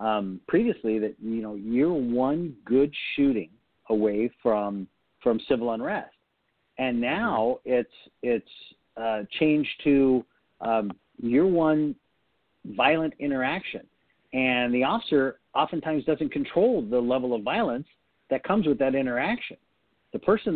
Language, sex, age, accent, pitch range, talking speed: English, male, 50-69, American, 115-160 Hz, 125 wpm